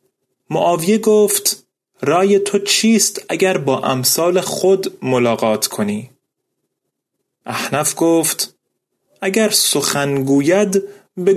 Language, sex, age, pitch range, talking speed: Persian, male, 30-49, 135-195 Hz, 90 wpm